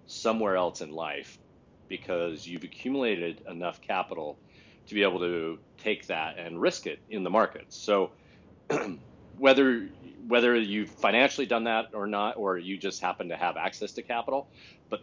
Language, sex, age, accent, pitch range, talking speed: English, male, 40-59, American, 90-115 Hz, 160 wpm